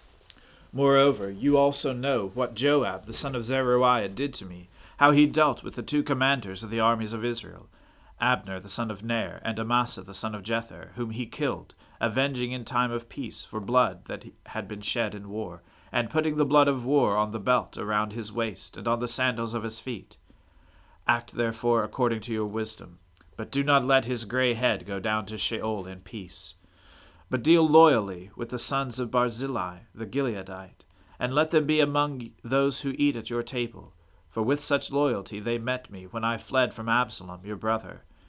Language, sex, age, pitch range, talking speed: English, male, 40-59, 100-130 Hz, 195 wpm